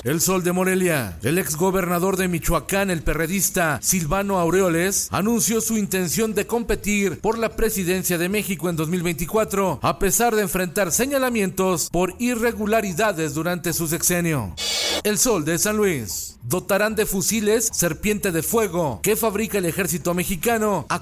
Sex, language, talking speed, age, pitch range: male, Spanish, 150 wpm, 40-59, 175-215 Hz